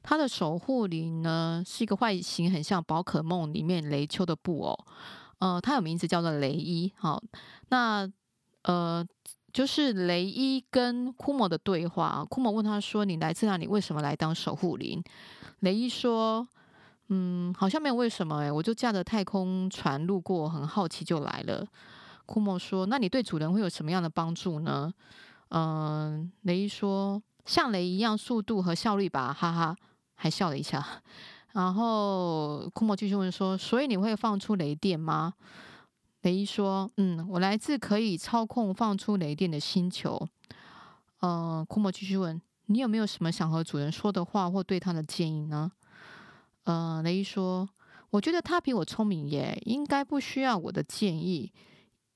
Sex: female